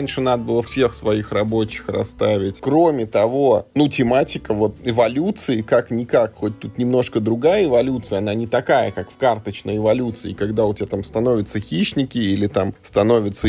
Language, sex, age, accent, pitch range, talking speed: Russian, male, 20-39, native, 105-130 Hz, 155 wpm